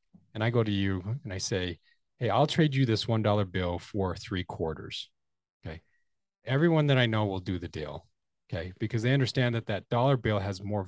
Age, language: 30-49, English